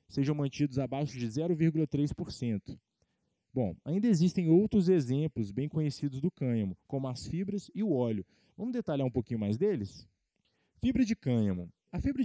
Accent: Brazilian